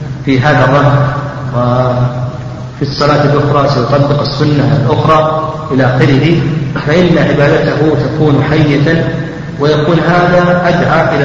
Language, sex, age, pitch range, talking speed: Arabic, male, 40-59, 135-165 Hz, 100 wpm